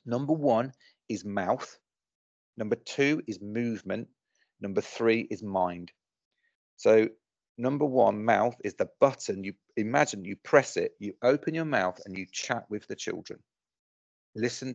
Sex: male